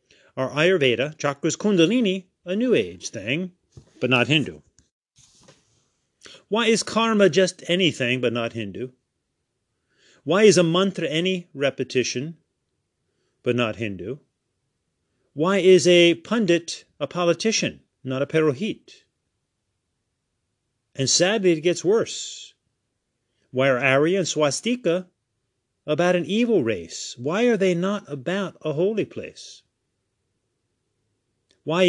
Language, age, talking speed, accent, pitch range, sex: English, 40-59, 115 wpm, American, 115-180 Hz, male